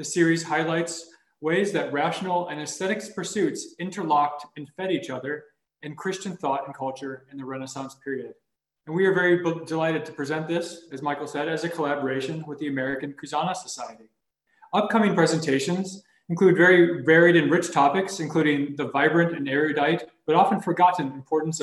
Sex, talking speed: male, 165 wpm